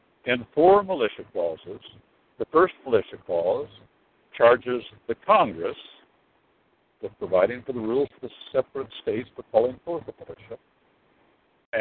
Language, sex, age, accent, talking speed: English, male, 60-79, American, 125 wpm